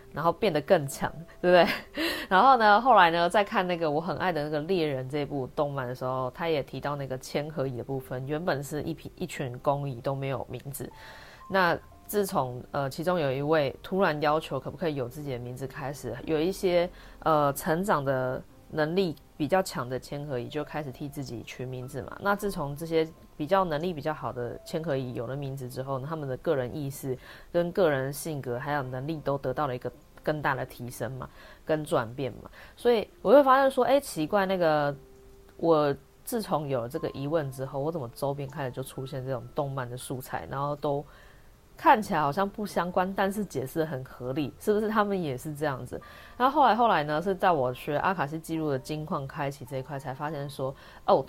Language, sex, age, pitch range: Chinese, female, 20-39, 130-170 Hz